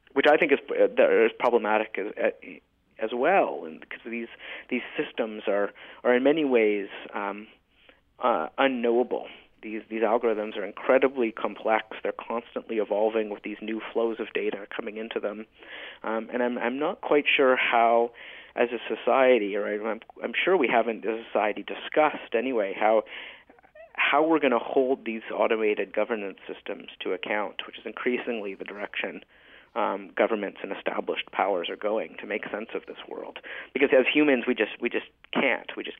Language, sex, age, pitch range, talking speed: English, male, 40-59, 110-145 Hz, 170 wpm